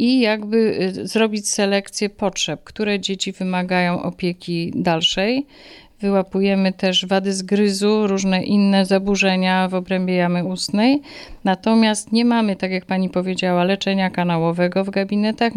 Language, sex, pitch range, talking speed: Polish, female, 180-210 Hz, 125 wpm